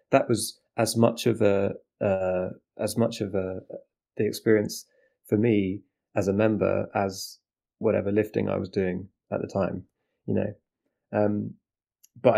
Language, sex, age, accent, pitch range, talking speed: English, male, 20-39, British, 95-110 Hz, 150 wpm